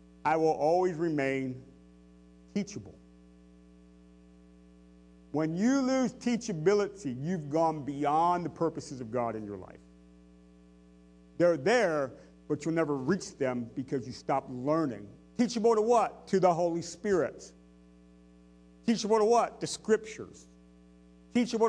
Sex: male